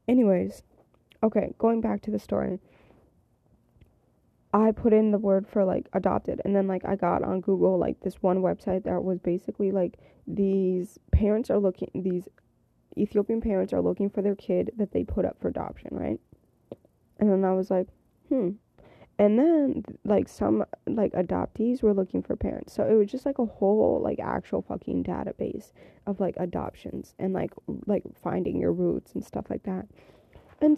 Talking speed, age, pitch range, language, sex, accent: 175 wpm, 20-39, 185-220 Hz, English, female, American